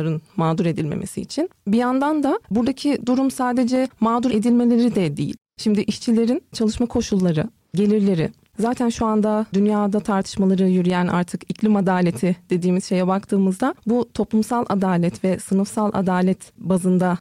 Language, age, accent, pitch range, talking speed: Turkish, 40-59, native, 190-225 Hz, 130 wpm